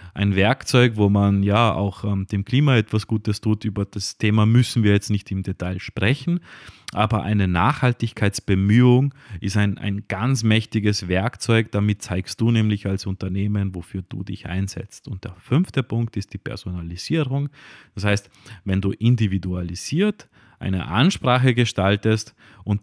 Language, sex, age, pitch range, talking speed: German, male, 30-49, 100-130 Hz, 150 wpm